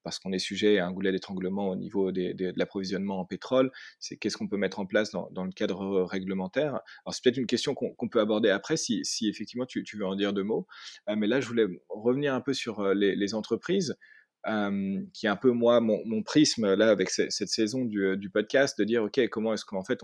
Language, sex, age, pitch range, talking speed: French, male, 30-49, 100-125 Hz, 240 wpm